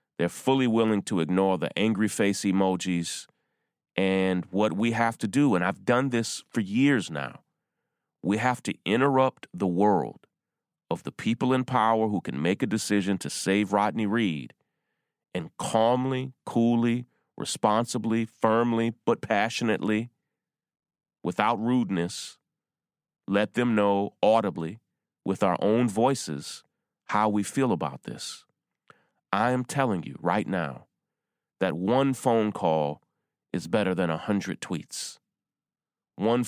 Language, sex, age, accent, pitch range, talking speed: English, male, 30-49, American, 90-115 Hz, 135 wpm